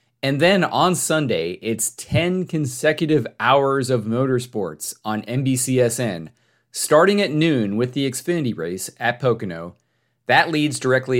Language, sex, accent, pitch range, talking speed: English, male, American, 105-135 Hz, 130 wpm